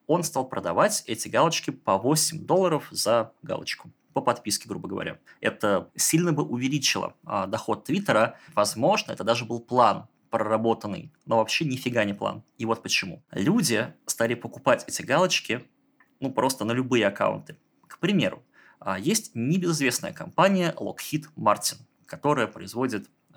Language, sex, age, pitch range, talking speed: Russian, male, 20-39, 110-150 Hz, 135 wpm